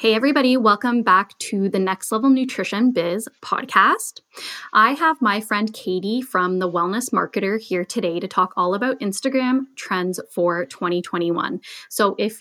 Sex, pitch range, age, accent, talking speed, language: female, 185-235 Hz, 10-29, American, 155 wpm, English